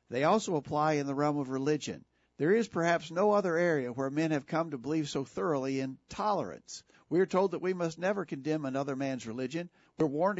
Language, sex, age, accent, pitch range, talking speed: English, male, 50-69, American, 135-165 Hz, 215 wpm